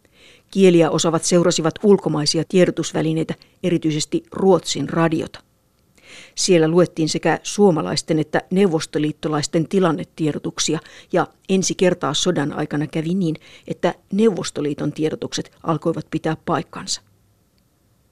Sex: female